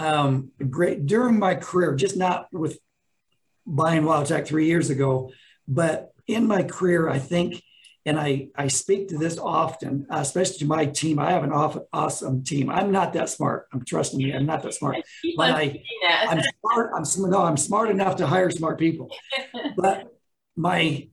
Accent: American